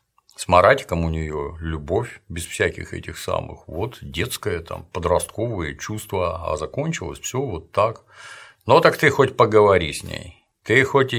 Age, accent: 50-69, native